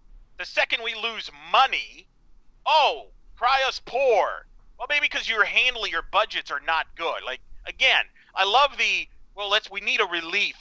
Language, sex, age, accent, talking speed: English, male, 40-59, American, 170 wpm